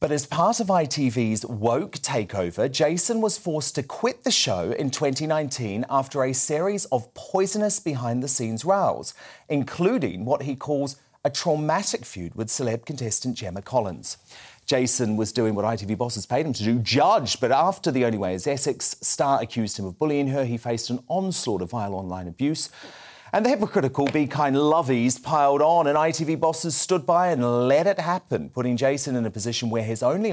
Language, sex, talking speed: English, male, 180 wpm